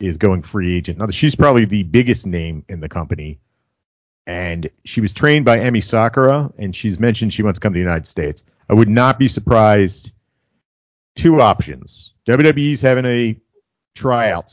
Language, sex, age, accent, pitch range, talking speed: English, male, 40-59, American, 90-115 Hz, 180 wpm